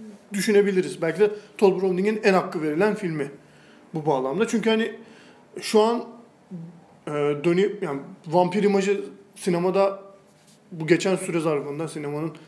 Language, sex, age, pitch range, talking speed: Turkish, male, 40-59, 155-200 Hz, 125 wpm